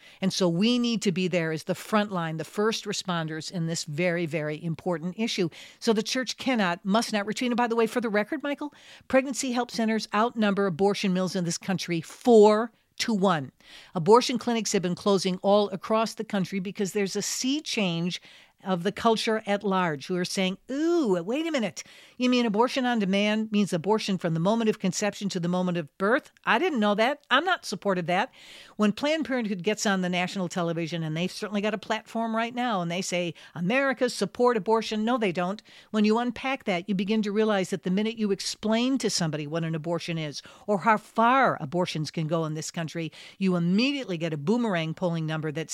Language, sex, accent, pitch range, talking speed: English, female, American, 180-225 Hz, 210 wpm